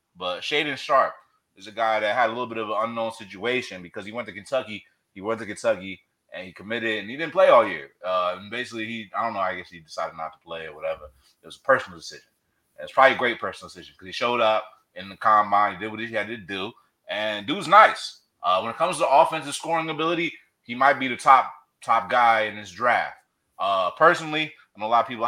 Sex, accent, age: male, American, 30-49